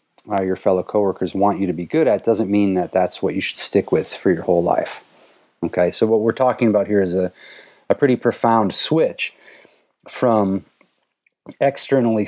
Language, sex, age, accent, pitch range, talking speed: English, male, 30-49, American, 95-105 Hz, 185 wpm